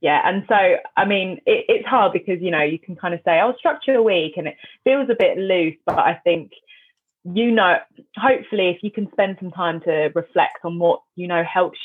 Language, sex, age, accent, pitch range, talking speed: English, female, 20-39, British, 160-210 Hz, 230 wpm